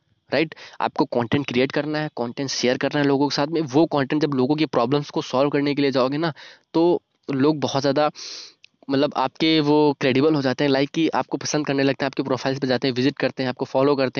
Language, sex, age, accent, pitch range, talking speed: Hindi, male, 20-39, native, 130-150 Hz, 240 wpm